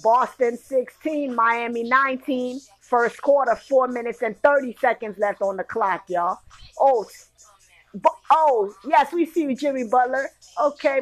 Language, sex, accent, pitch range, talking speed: English, female, American, 235-290 Hz, 130 wpm